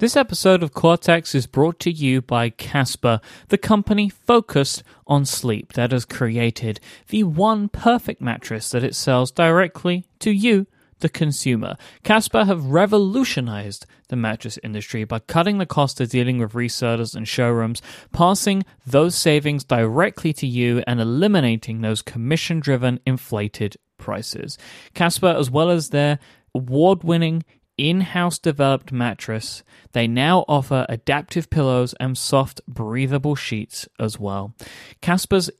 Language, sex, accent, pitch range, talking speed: English, male, British, 120-175 Hz, 135 wpm